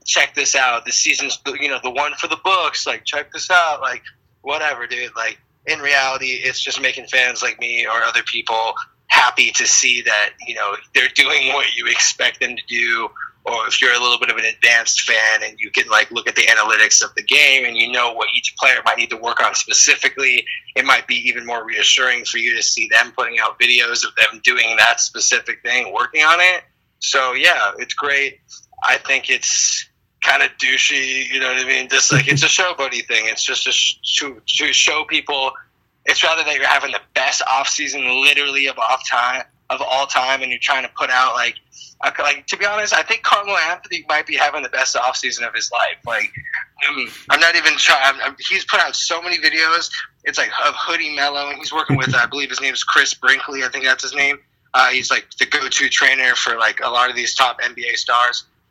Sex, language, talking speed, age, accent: male, English, 225 wpm, 20-39, American